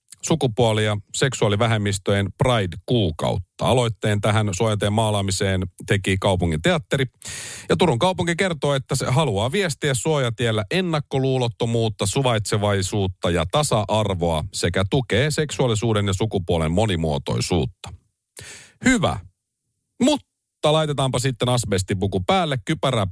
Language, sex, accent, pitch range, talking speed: Finnish, male, native, 100-135 Hz, 95 wpm